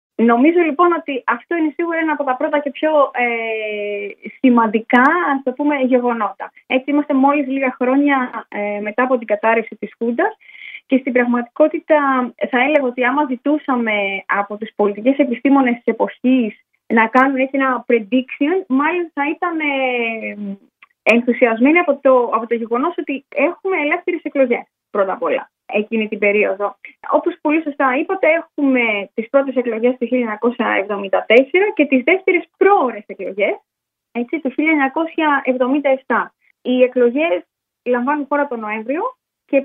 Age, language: 20-39, Greek